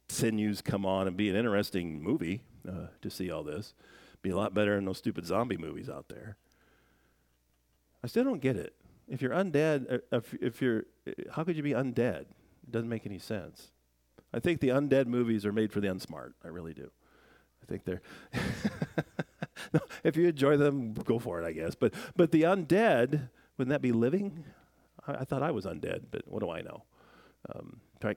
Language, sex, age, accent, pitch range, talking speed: English, male, 40-59, American, 95-145 Hz, 200 wpm